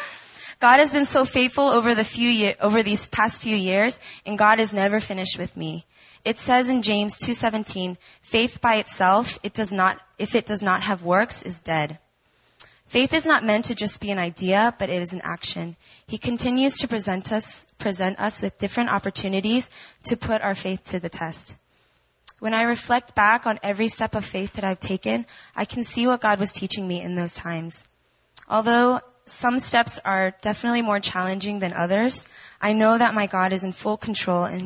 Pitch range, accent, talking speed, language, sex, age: 185-225 Hz, American, 195 wpm, English, female, 20-39